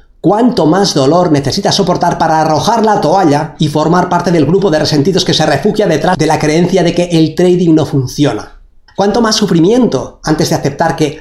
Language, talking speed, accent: Spanish, 195 wpm, Spanish